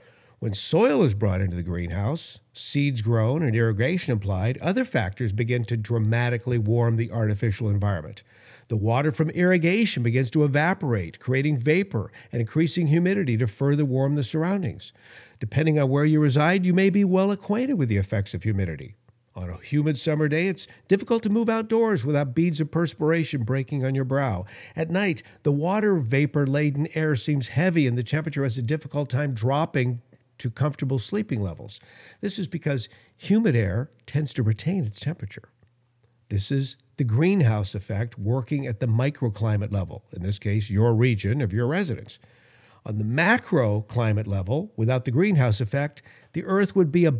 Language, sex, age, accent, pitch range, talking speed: English, male, 50-69, American, 115-160 Hz, 170 wpm